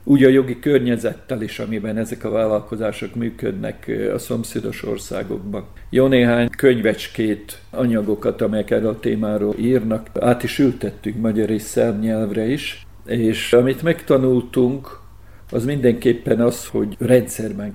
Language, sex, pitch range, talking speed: Hungarian, male, 110-130 Hz, 120 wpm